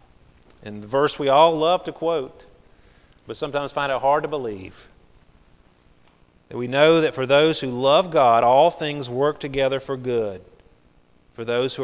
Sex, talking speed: male, 165 wpm